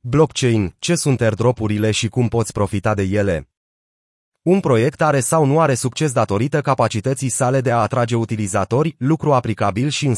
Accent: native